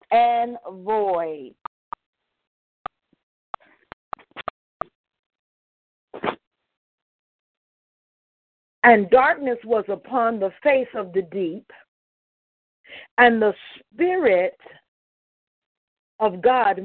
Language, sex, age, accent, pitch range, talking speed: English, female, 50-69, American, 195-265 Hz, 55 wpm